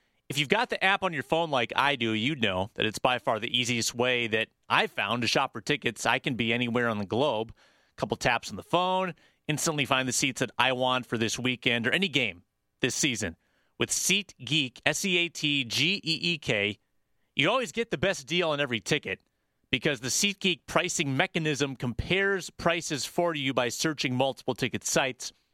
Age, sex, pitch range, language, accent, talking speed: 30-49, male, 120-165 Hz, English, American, 190 wpm